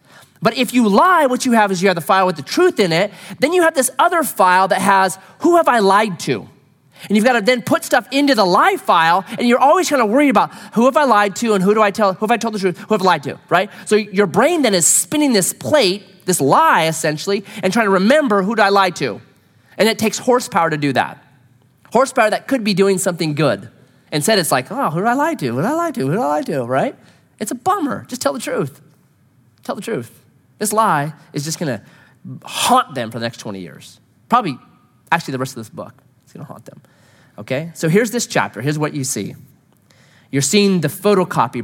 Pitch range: 135-210 Hz